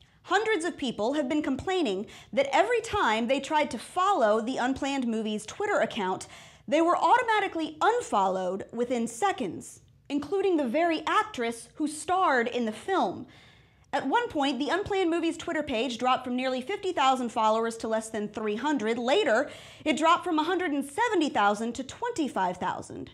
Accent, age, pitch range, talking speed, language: American, 30-49, 225-335 Hz, 150 wpm, English